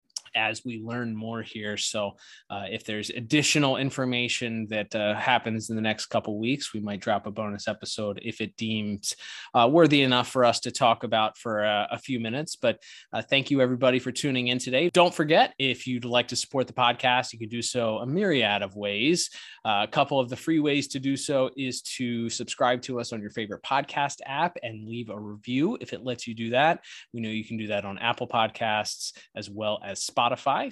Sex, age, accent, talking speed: male, 20-39, American, 220 wpm